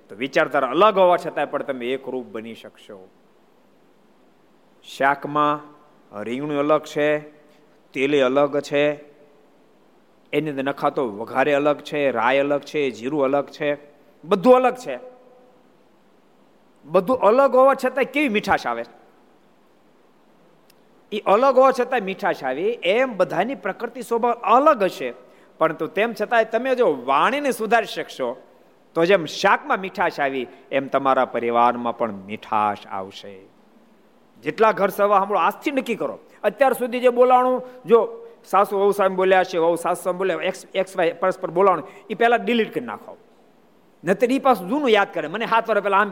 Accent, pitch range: native, 145-230 Hz